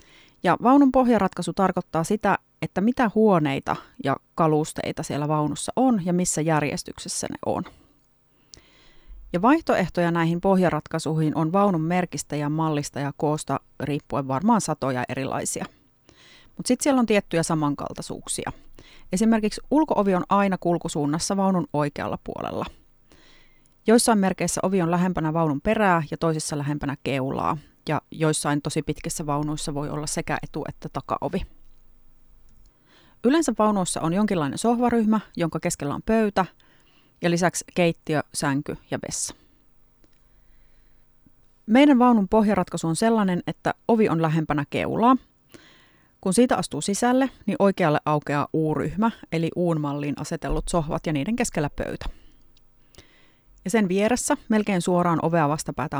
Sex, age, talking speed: female, 30-49, 125 wpm